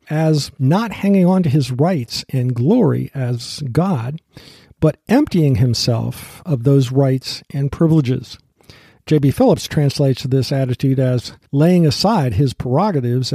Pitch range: 130-180 Hz